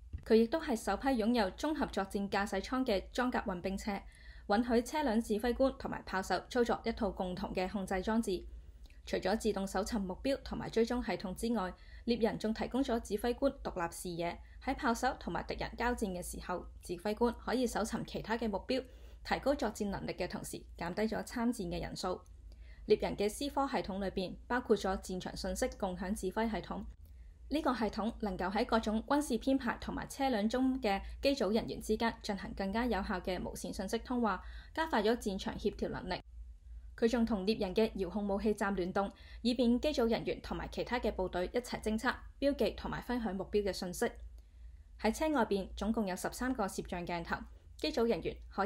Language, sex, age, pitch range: Chinese, female, 20-39, 190-235 Hz